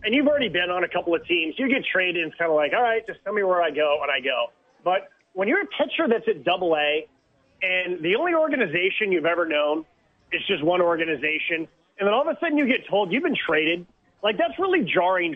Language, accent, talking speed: English, American, 250 wpm